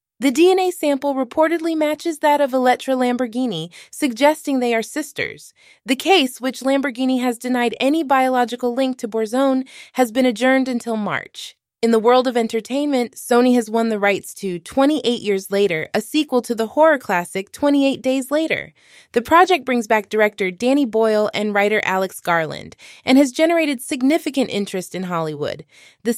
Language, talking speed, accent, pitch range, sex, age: English, 165 wpm, American, 210-275 Hz, female, 20-39